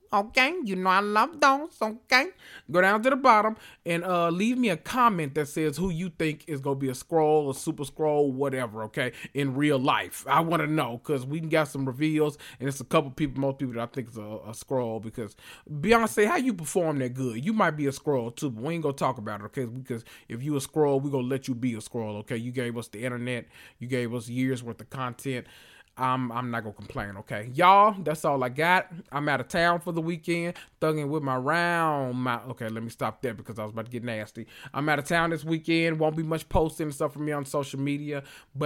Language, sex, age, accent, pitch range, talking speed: English, male, 30-49, American, 125-165 Hz, 245 wpm